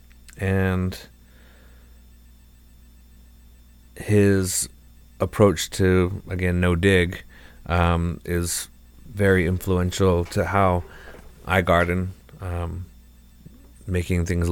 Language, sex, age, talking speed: English, male, 30-49, 75 wpm